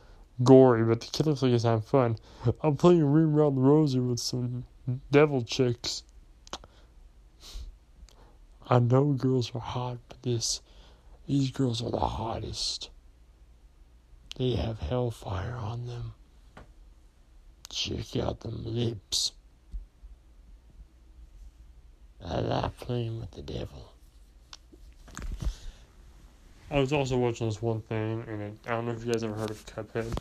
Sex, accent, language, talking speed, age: male, American, English, 125 wpm, 20-39